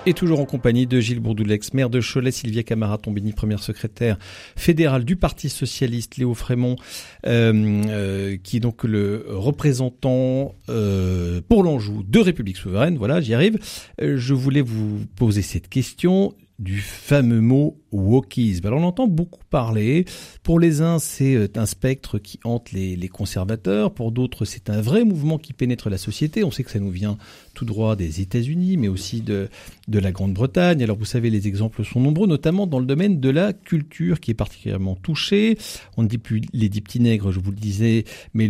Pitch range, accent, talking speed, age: 105-135 Hz, French, 190 wpm, 50-69